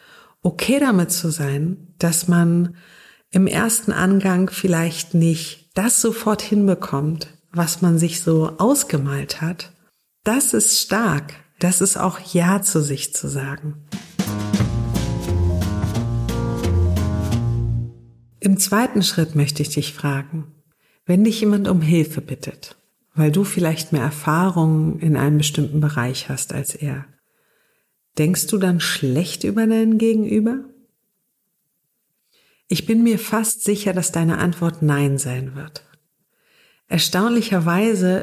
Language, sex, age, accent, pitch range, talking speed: German, female, 50-69, German, 150-205 Hz, 120 wpm